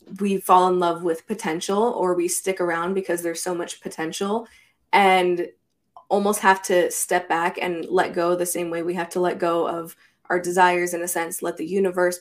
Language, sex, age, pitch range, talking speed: English, female, 20-39, 175-190 Hz, 200 wpm